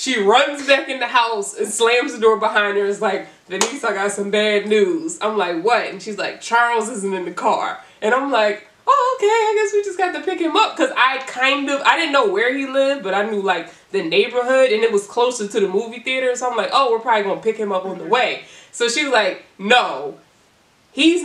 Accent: American